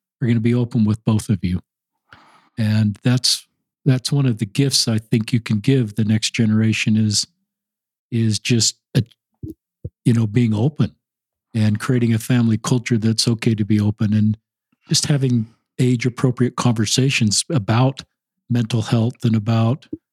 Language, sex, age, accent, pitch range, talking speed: English, male, 50-69, American, 115-135 Hz, 160 wpm